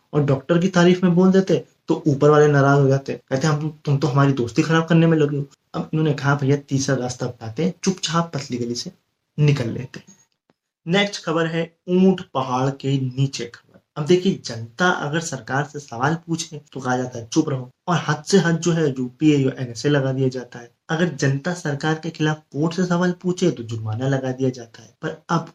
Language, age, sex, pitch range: Hindi, 20-39, male, 130-165 Hz